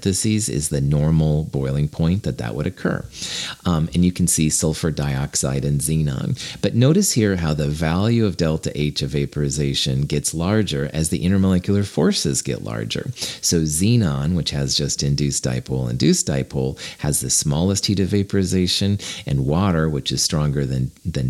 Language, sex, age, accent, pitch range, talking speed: English, male, 40-59, American, 70-90 Hz, 165 wpm